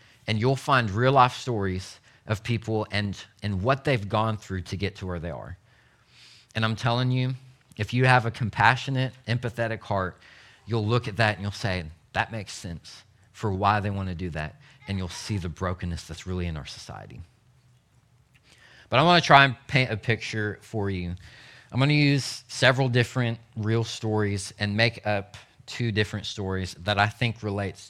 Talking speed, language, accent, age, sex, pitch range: 180 wpm, English, American, 30-49, male, 100-120 Hz